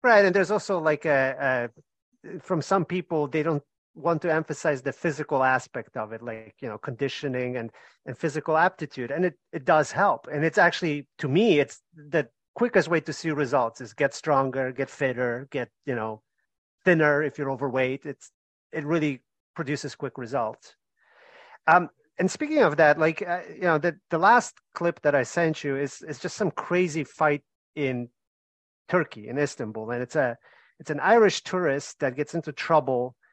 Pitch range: 130-170 Hz